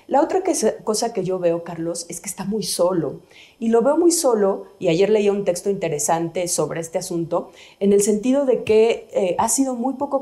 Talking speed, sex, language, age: 210 wpm, female, Spanish, 40-59